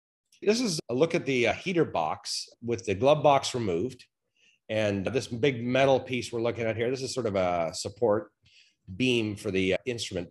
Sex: male